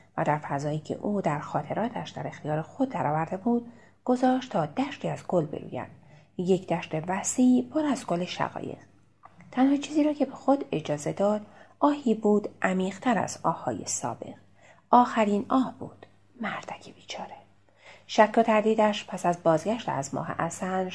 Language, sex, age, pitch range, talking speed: Persian, female, 30-49, 155-220 Hz, 150 wpm